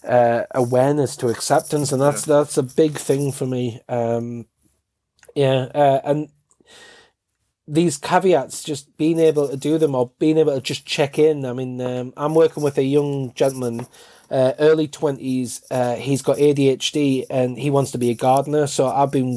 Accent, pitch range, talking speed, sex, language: British, 125-150 Hz, 175 wpm, male, English